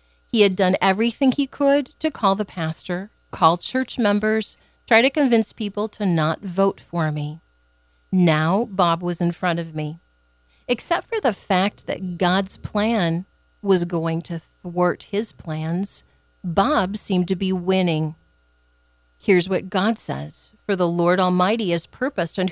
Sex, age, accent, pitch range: female, 40-59, American, 160-210 Hz